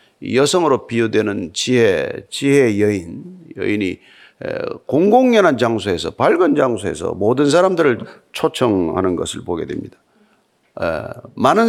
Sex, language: male, Korean